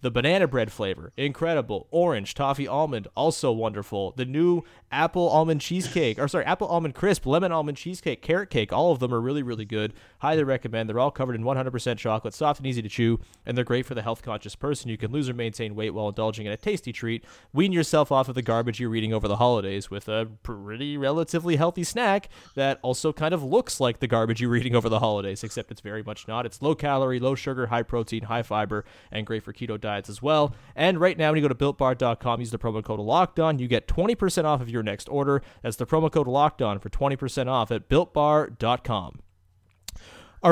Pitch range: 110-145 Hz